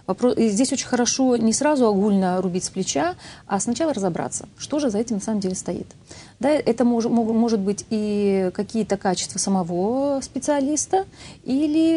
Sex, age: female, 30-49